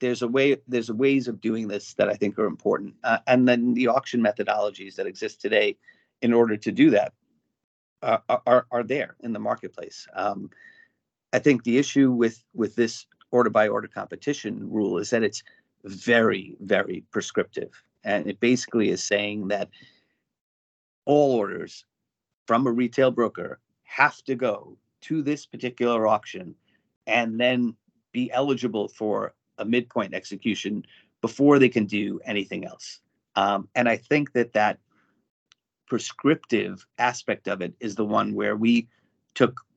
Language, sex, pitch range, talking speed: English, male, 110-130 Hz, 155 wpm